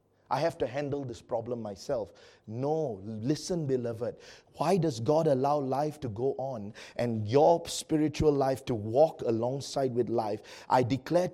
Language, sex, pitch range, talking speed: English, male, 135-210 Hz, 155 wpm